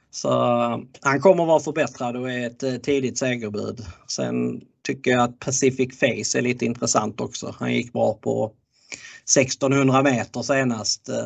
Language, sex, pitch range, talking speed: Swedish, male, 120-140 Hz, 150 wpm